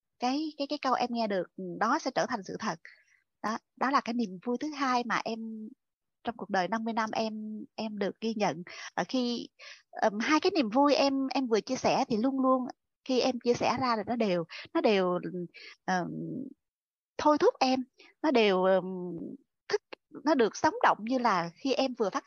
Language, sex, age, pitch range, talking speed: Vietnamese, female, 20-39, 200-270 Hz, 205 wpm